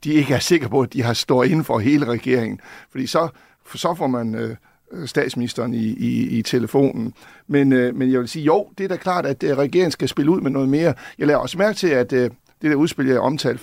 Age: 60-79